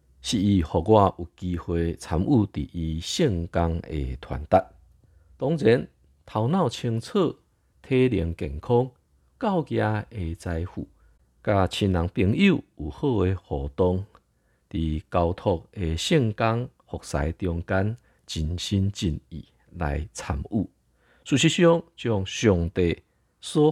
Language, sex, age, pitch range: Chinese, male, 50-69, 80-110 Hz